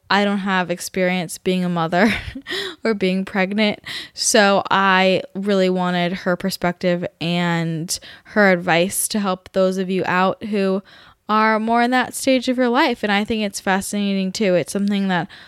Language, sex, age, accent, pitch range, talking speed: English, female, 10-29, American, 185-220 Hz, 165 wpm